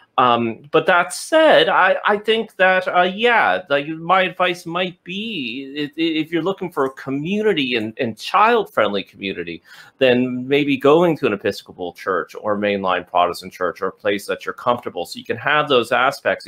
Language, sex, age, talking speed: English, male, 30-49, 180 wpm